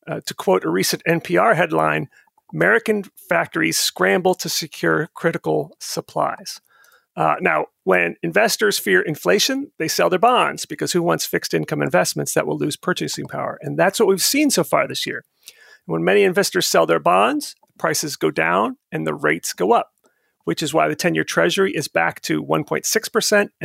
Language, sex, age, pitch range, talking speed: English, male, 40-59, 160-225 Hz, 175 wpm